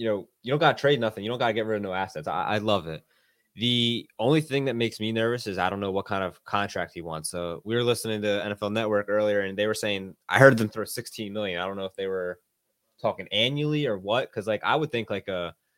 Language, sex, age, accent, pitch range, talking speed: English, male, 20-39, American, 95-115 Hz, 280 wpm